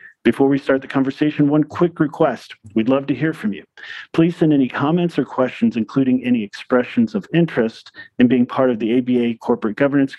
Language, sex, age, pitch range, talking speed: English, male, 40-59, 125-160 Hz, 195 wpm